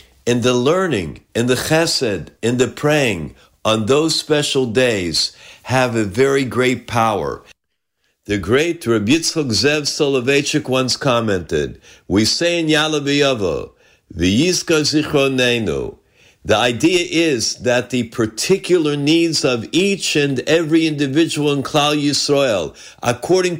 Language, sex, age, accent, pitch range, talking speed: English, male, 50-69, American, 120-150 Hz, 120 wpm